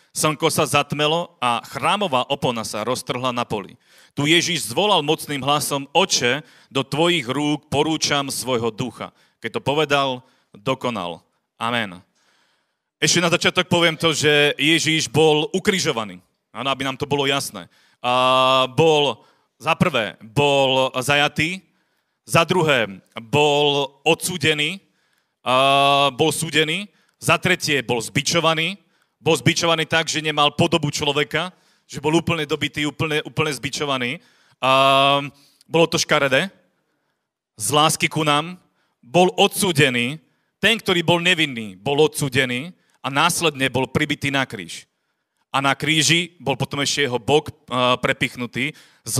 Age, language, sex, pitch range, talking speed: 40-59, Slovak, male, 135-165 Hz, 130 wpm